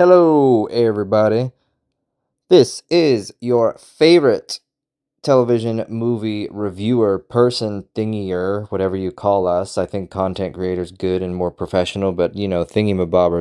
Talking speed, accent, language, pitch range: 125 wpm, American, English, 95-125 Hz